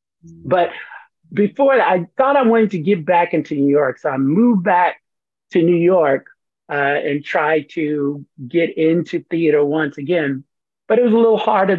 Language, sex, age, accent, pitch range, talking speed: English, male, 50-69, American, 145-175 Hz, 175 wpm